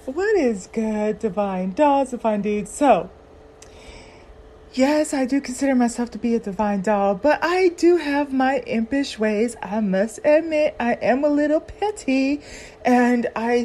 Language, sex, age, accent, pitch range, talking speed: English, female, 30-49, American, 210-285 Hz, 155 wpm